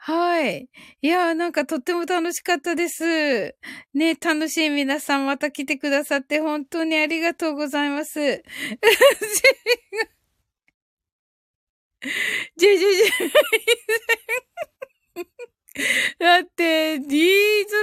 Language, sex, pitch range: Japanese, female, 305-425 Hz